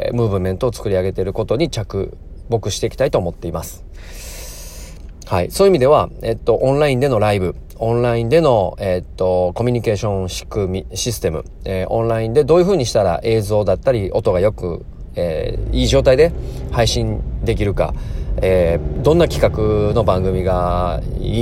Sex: male